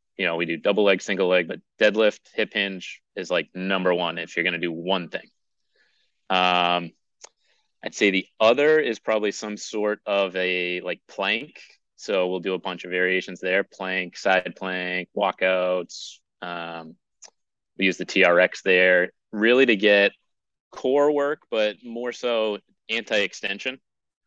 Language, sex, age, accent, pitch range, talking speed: English, male, 30-49, American, 90-110 Hz, 155 wpm